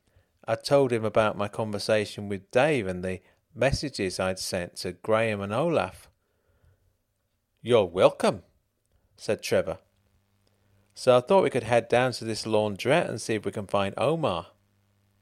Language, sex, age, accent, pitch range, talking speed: English, male, 40-59, British, 100-140 Hz, 150 wpm